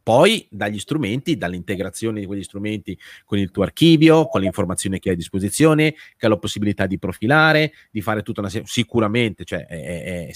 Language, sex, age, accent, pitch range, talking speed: Italian, male, 30-49, native, 100-140 Hz, 190 wpm